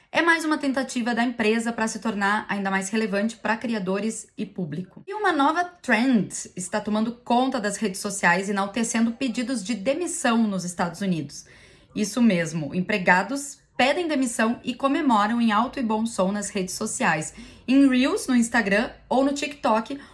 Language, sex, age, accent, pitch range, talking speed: Portuguese, female, 10-29, Brazilian, 200-255 Hz, 165 wpm